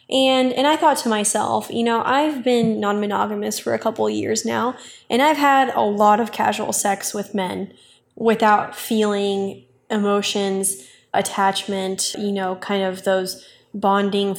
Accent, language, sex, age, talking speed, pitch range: American, English, female, 10-29, 150 wpm, 200-255 Hz